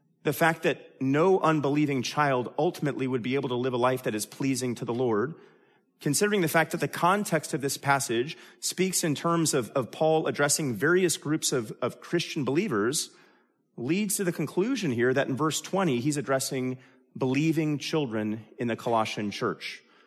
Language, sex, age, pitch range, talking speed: English, male, 30-49, 130-170 Hz, 175 wpm